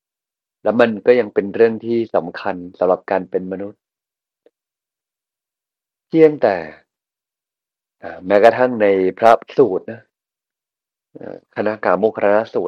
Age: 30-49